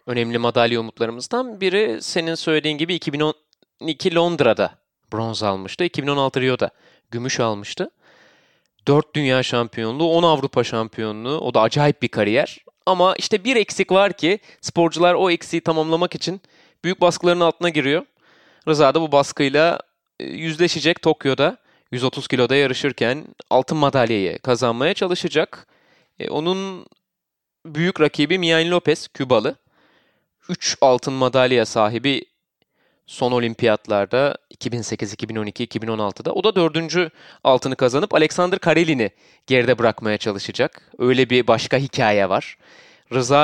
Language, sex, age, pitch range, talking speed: Turkish, male, 30-49, 125-165 Hz, 115 wpm